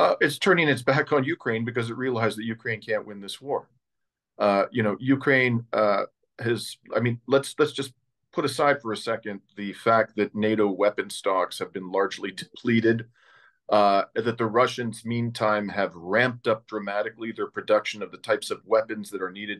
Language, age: English, 40-59